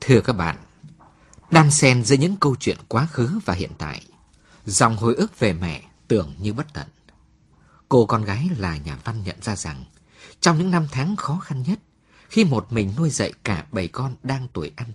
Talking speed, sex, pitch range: 200 wpm, male, 100-150 Hz